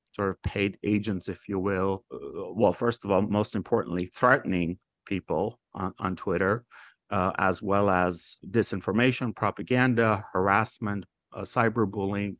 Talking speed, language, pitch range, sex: 130 wpm, English, 95-120 Hz, male